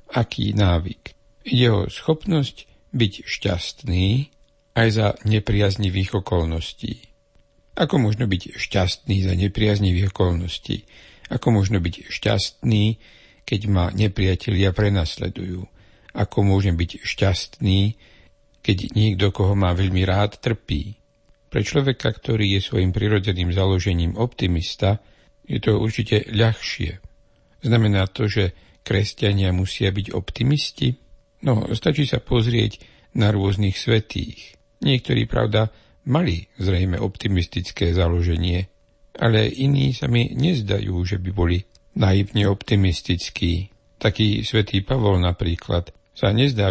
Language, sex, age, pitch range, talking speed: Slovak, male, 60-79, 95-115 Hz, 110 wpm